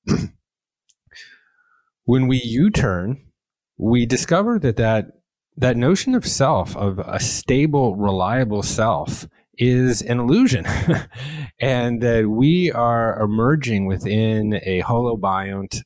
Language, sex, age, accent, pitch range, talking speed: English, male, 30-49, American, 100-135 Hz, 100 wpm